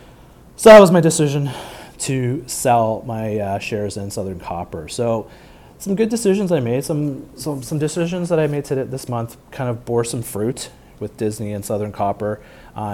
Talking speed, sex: 185 wpm, male